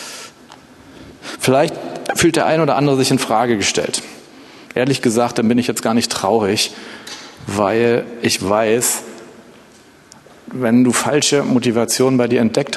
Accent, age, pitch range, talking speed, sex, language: German, 40-59, 120-140 Hz, 135 wpm, male, German